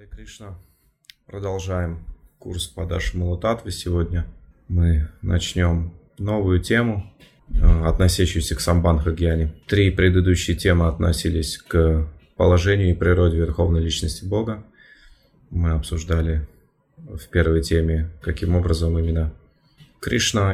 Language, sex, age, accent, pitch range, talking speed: Russian, male, 20-39, native, 80-90 Hz, 100 wpm